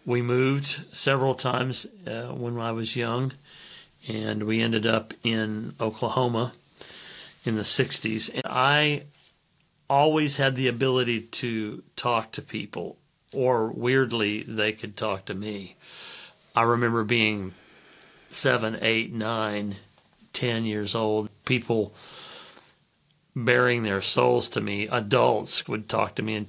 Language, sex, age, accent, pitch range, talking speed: English, male, 40-59, American, 105-120 Hz, 125 wpm